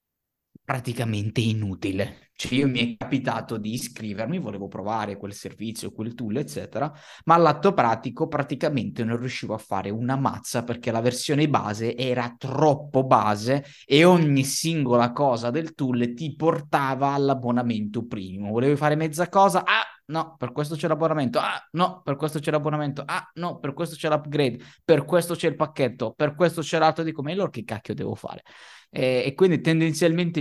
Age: 20-39